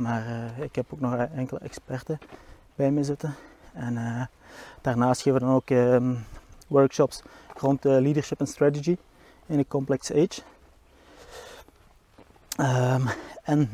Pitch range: 125-150 Hz